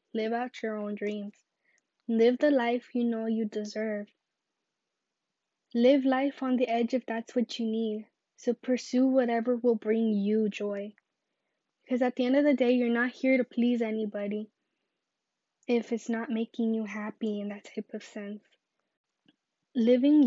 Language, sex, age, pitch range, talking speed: English, female, 10-29, 220-245 Hz, 160 wpm